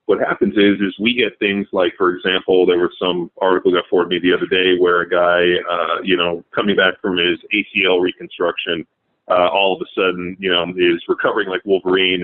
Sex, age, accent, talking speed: male, 30-49, American, 210 wpm